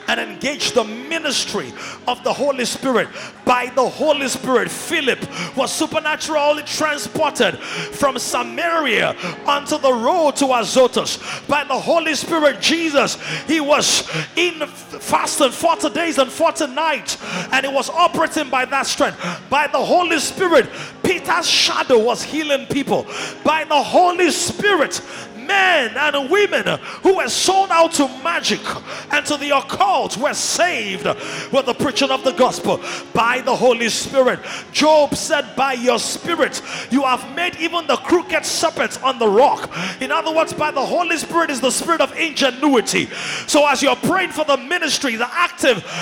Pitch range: 265-325 Hz